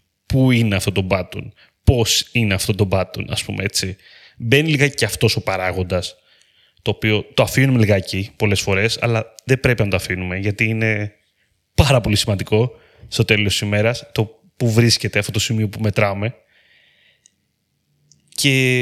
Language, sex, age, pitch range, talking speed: Greek, male, 20-39, 105-145 Hz, 160 wpm